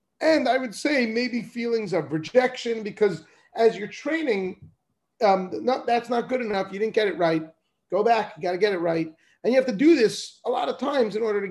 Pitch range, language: 175-240 Hz, English